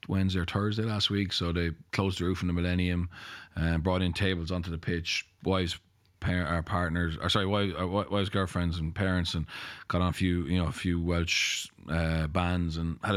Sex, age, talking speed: male, 20-39, 195 wpm